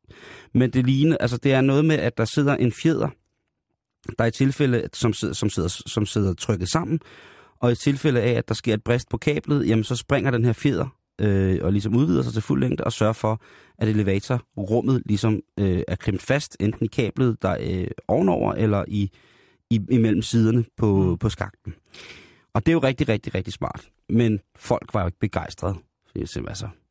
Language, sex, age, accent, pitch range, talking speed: Danish, male, 30-49, native, 105-130 Hz, 200 wpm